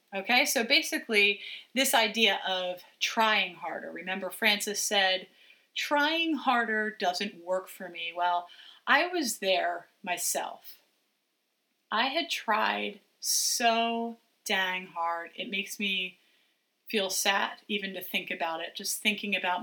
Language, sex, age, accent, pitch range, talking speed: English, female, 30-49, American, 180-215 Hz, 125 wpm